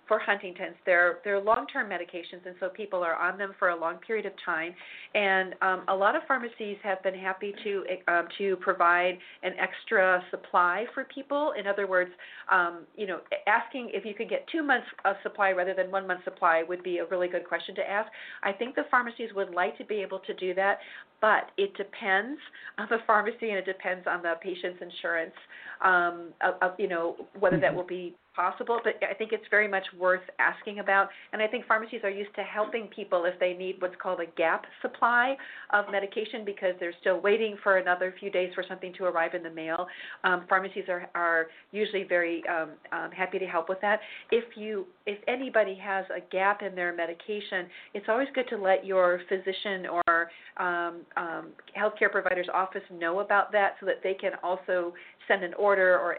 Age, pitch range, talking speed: 40-59, 180-210 Hz, 200 wpm